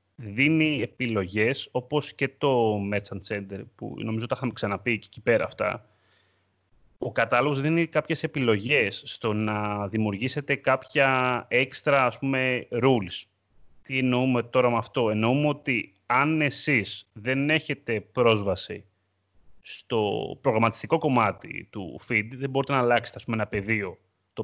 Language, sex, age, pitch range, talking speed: Greek, male, 30-49, 105-145 Hz, 135 wpm